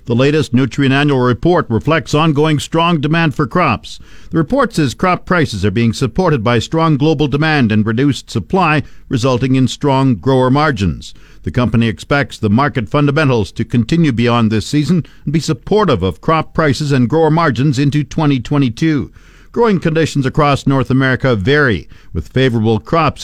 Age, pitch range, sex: 50-69, 120-155 Hz, male